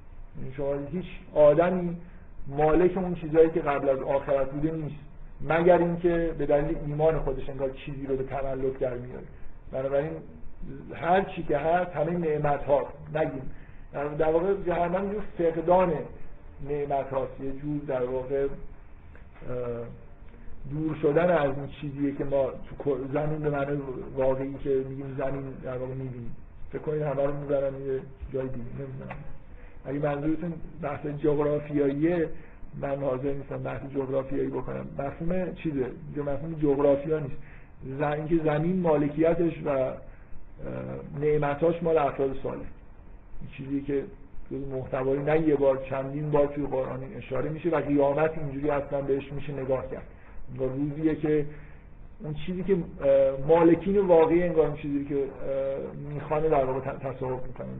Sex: male